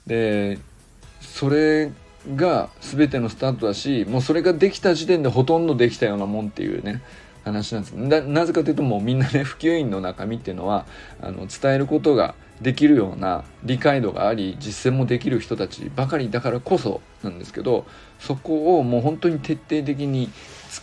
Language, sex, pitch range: Japanese, male, 105-140 Hz